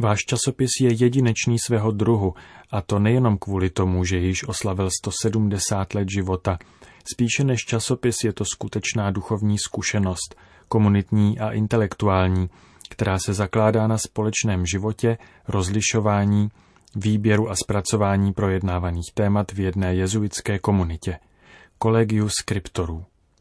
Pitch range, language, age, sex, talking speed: 95-115 Hz, Czech, 30-49, male, 120 wpm